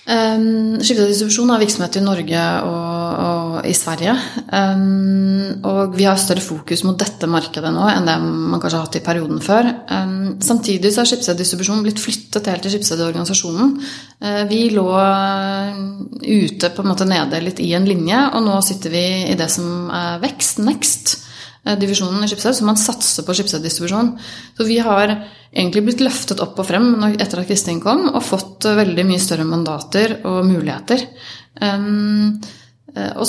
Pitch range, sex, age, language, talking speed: 175-215 Hz, female, 30-49, English, 165 wpm